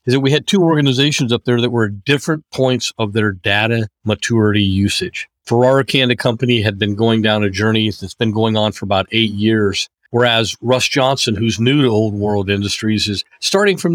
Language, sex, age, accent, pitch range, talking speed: English, male, 50-69, American, 105-125 Hz, 200 wpm